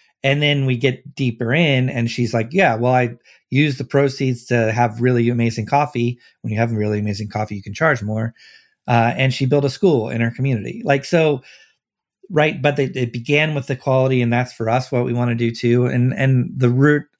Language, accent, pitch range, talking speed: English, American, 115-140 Hz, 215 wpm